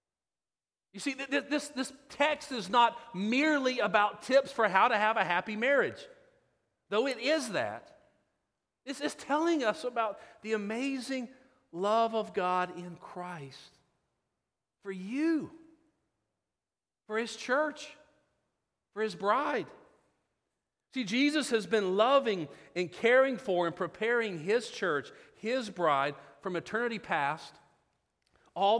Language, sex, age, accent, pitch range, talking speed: English, male, 40-59, American, 185-255 Hz, 125 wpm